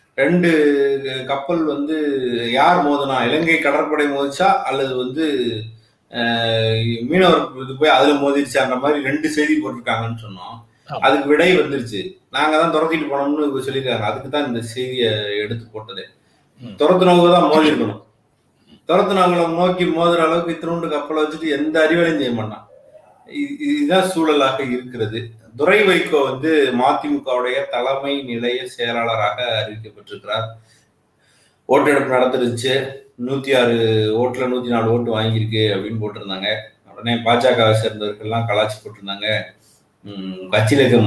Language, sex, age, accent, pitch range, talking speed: Tamil, male, 30-49, native, 115-150 Hz, 115 wpm